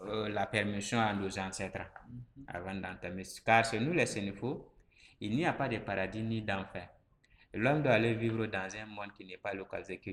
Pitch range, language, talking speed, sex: 100-115 Hz, French, 195 wpm, male